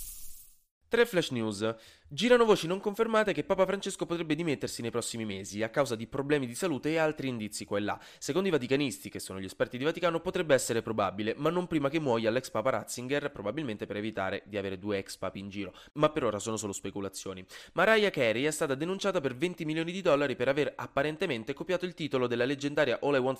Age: 20-39